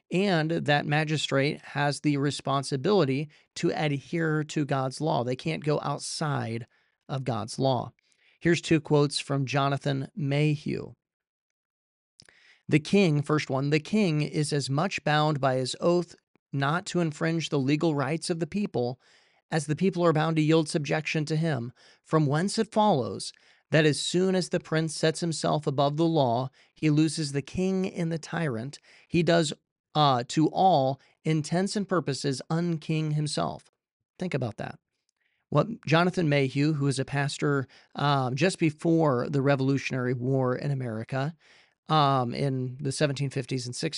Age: 40-59